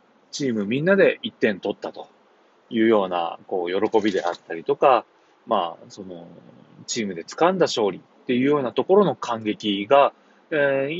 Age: 20-39